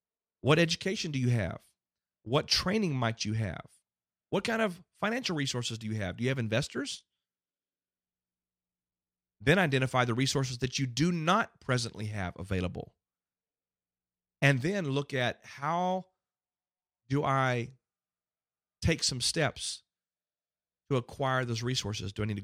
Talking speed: 135 wpm